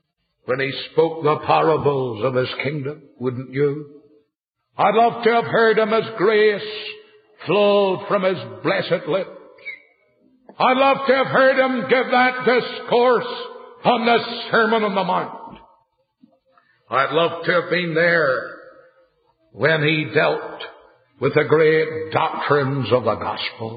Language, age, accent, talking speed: English, 60-79, American, 135 wpm